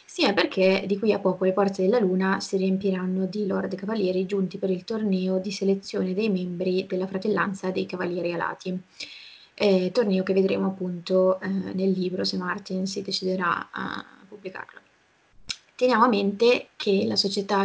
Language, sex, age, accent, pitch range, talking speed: Italian, female, 20-39, native, 185-200 Hz, 165 wpm